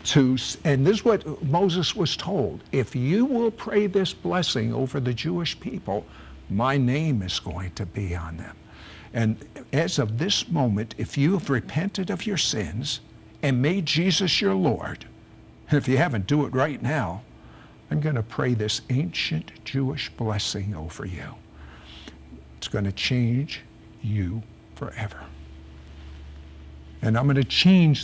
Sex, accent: male, American